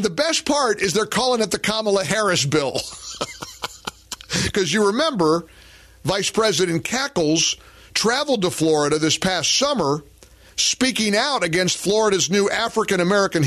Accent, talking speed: American, 135 wpm